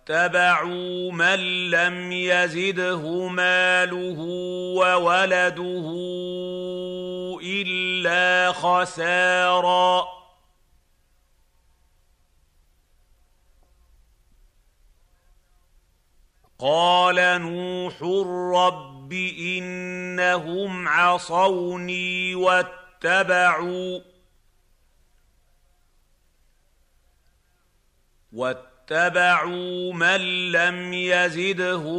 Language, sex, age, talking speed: Arabic, male, 50-69, 35 wpm